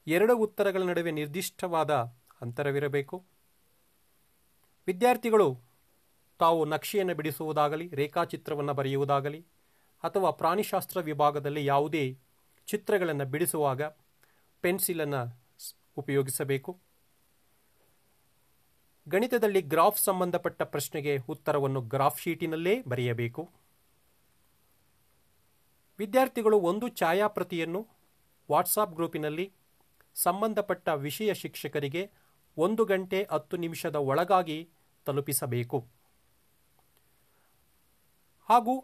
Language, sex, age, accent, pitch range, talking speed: Kannada, male, 40-59, native, 145-185 Hz, 65 wpm